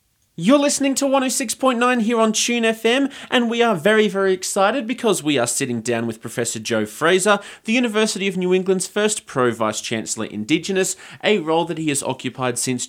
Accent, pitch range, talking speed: Australian, 120-195 Hz, 175 wpm